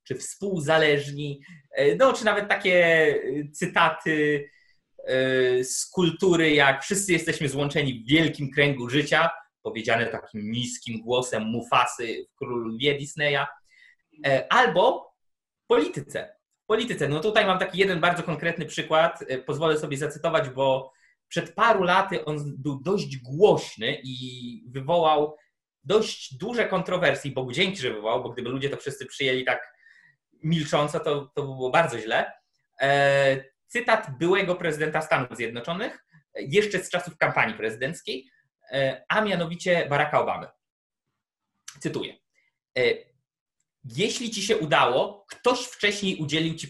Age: 20-39